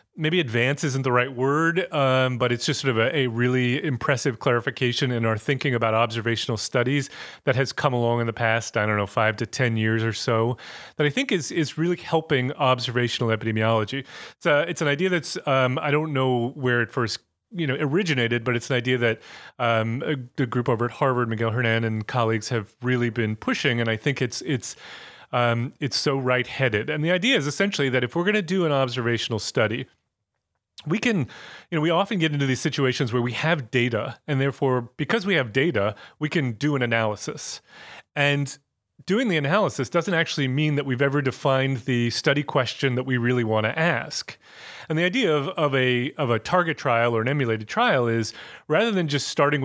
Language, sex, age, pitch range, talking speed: English, male, 30-49, 120-155 Hz, 200 wpm